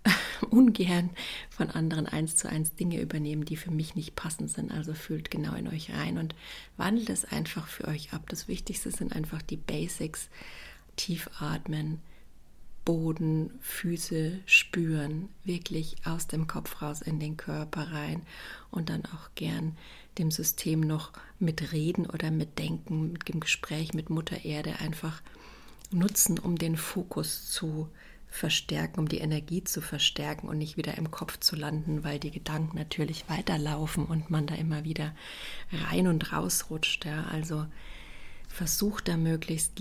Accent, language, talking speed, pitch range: German, German, 155 wpm, 155-170 Hz